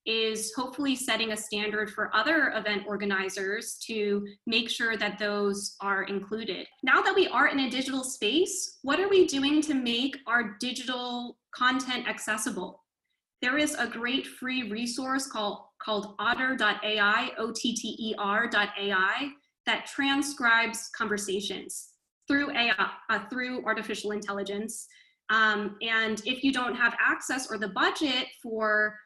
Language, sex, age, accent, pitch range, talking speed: English, female, 20-39, American, 210-275 Hz, 140 wpm